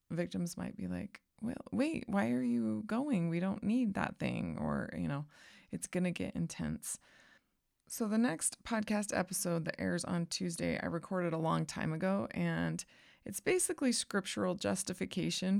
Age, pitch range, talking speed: 20-39, 165-205 Hz, 160 wpm